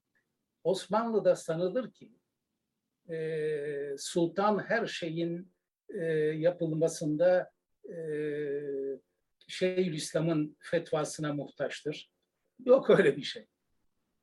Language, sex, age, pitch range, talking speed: Turkish, male, 60-79, 145-185 Hz, 70 wpm